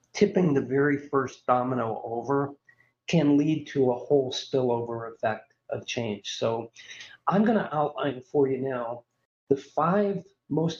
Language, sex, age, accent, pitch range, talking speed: English, male, 50-69, American, 125-160 Hz, 145 wpm